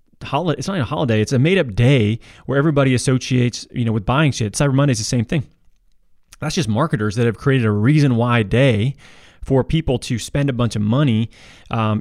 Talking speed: 215 wpm